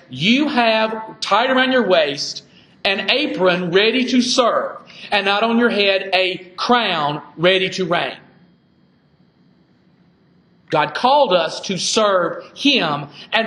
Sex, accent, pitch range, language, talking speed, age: male, American, 175-220 Hz, English, 125 wpm, 40-59